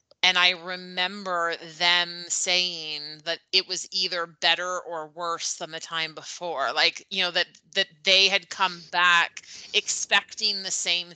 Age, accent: 30-49, American